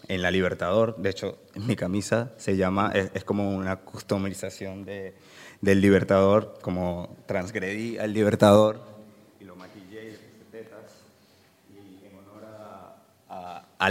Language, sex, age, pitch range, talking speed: German, male, 20-39, 95-110 Hz, 140 wpm